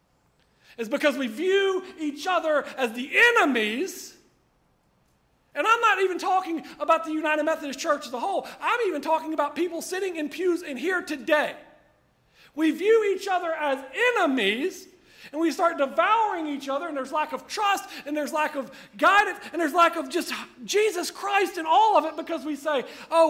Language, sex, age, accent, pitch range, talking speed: English, male, 40-59, American, 285-360 Hz, 180 wpm